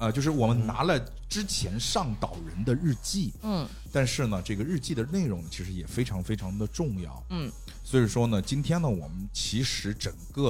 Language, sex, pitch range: Chinese, male, 95-145 Hz